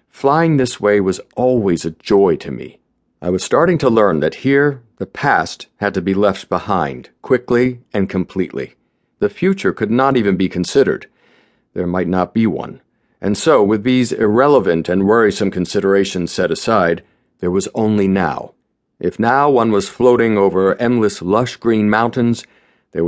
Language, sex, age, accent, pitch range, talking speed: English, male, 50-69, American, 95-125 Hz, 165 wpm